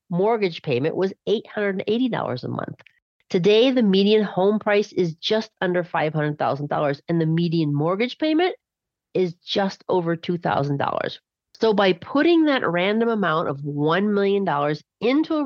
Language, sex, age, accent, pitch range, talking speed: English, female, 40-59, American, 160-225 Hz, 135 wpm